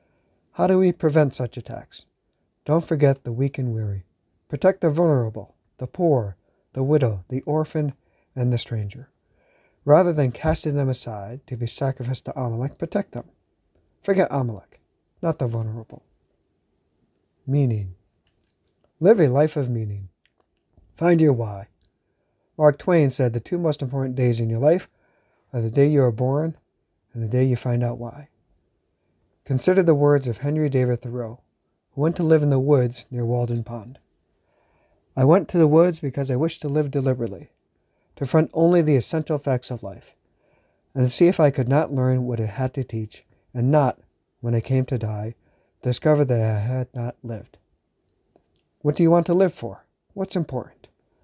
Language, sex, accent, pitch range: English, male, American, 115-150 Hz